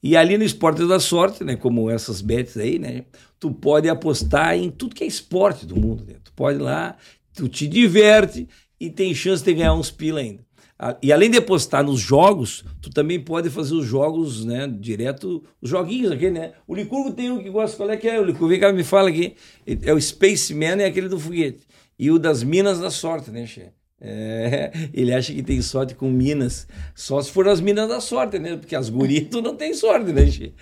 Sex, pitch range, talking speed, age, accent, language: male, 130-190 Hz, 225 wpm, 60-79, Brazilian, Portuguese